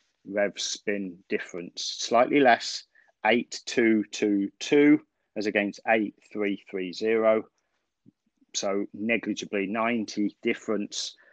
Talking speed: 100 wpm